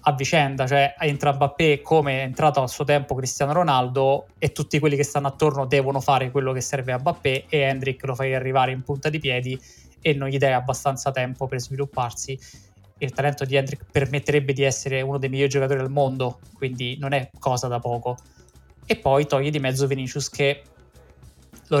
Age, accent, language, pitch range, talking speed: 20-39, native, Italian, 130-150 Hz, 195 wpm